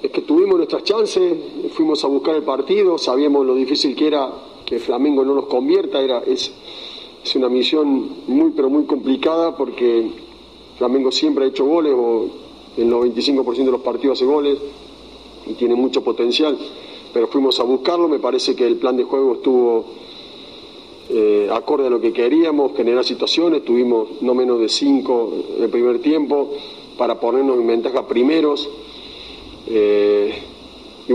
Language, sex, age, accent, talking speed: Spanish, male, 40-59, Argentinian, 160 wpm